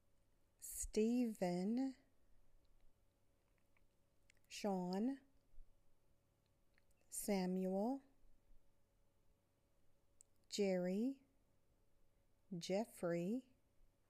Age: 50-69